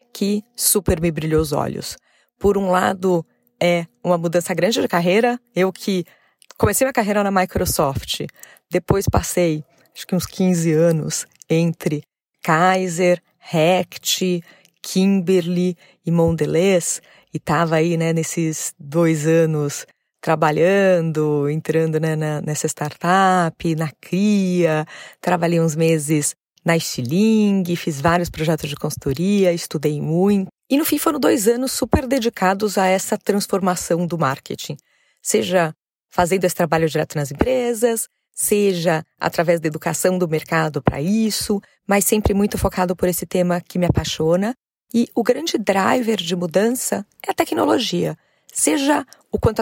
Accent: Brazilian